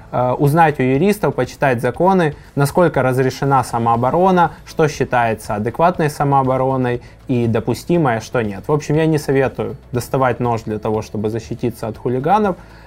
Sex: male